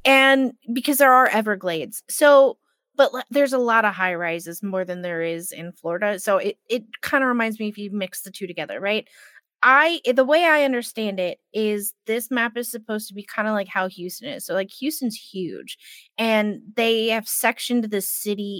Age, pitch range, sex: 20-39, 195-255 Hz, female